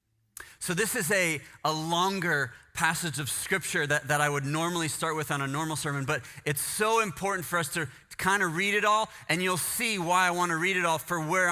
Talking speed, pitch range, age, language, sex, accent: 225 wpm, 145-195 Hz, 30-49, English, male, American